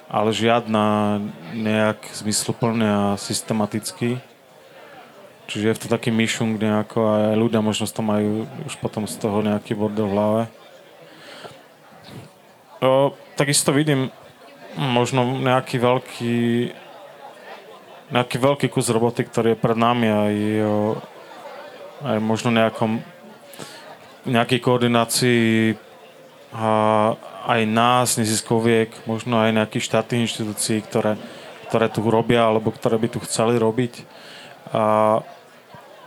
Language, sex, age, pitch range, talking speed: Slovak, male, 20-39, 110-120 Hz, 115 wpm